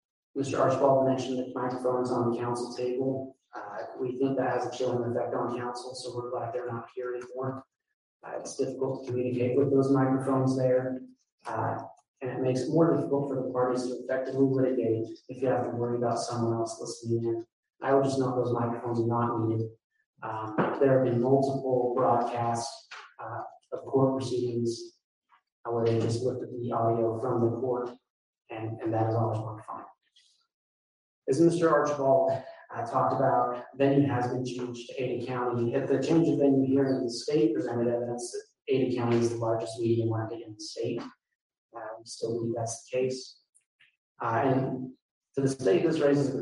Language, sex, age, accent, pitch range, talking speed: English, male, 30-49, American, 115-135 Hz, 185 wpm